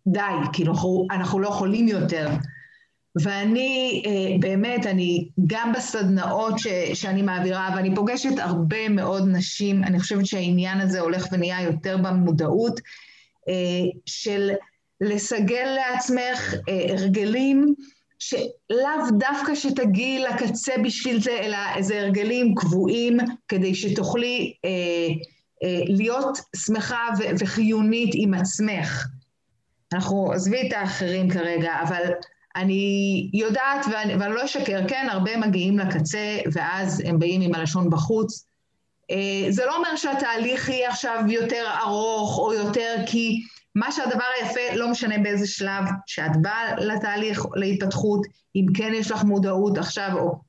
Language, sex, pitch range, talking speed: Hebrew, female, 185-230 Hz, 115 wpm